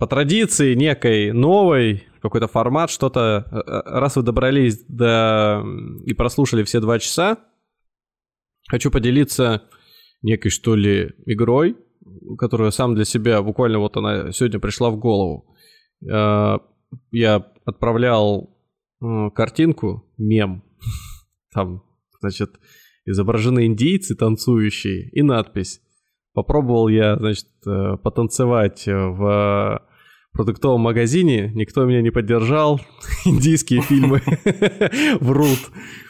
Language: Russian